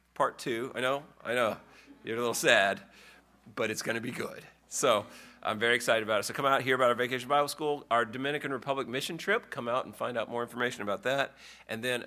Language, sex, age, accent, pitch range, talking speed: English, male, 40-59, American, 95-130 Hz, 240 wpm